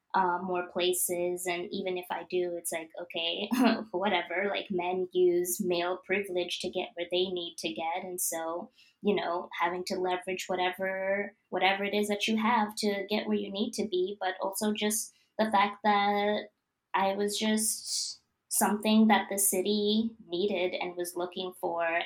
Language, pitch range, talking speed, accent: English, 175-205 Hz, 170 wpm, American